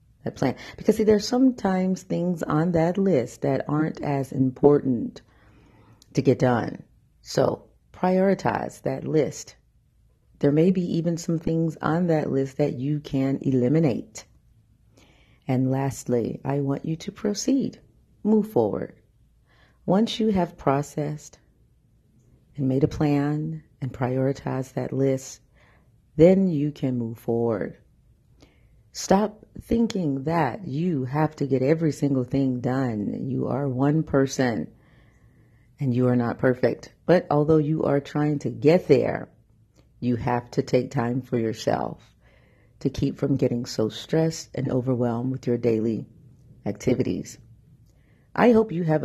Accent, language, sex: American, English, female